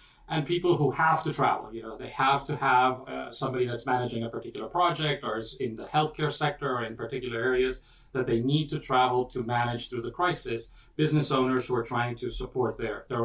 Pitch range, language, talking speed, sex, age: 120-145 Hz, English, 220 wpm, male, 40-59